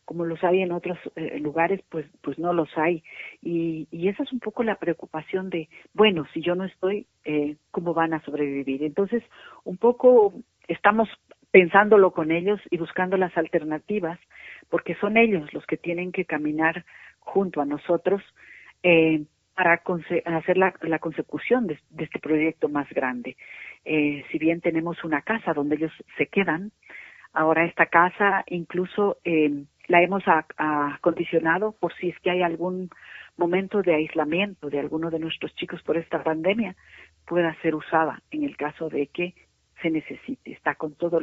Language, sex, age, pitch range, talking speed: Spanish, female, 50-69, 155-190 Hz, 165 wpm